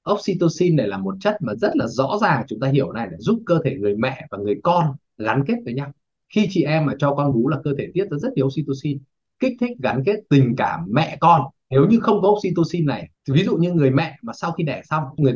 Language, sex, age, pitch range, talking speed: Vietnamese, male, 20-39, 135-180 Hz, 260 wpm